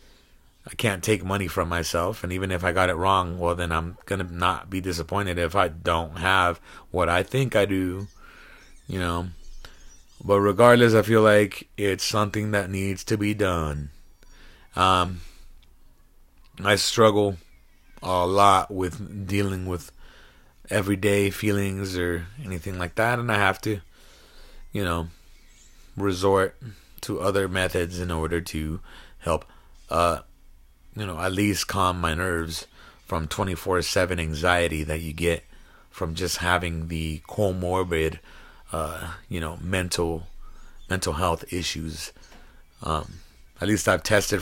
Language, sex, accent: English, male, American